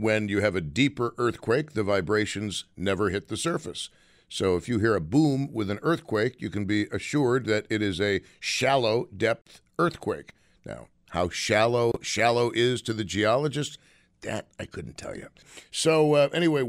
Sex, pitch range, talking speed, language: male, 110-145 Hz, 170 wpm, English